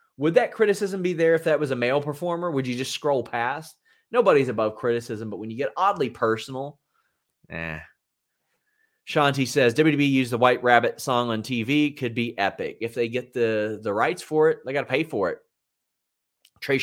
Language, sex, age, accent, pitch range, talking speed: English, male, 30-49, American, 120-155 Hz, 195 wpm